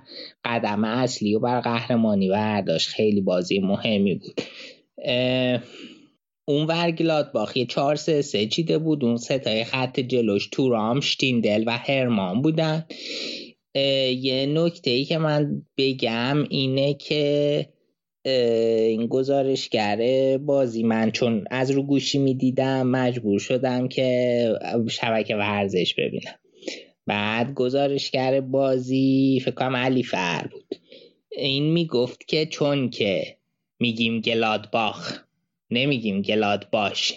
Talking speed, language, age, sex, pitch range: 105 wpm, Persian, 20-39, male, 115-135 Hz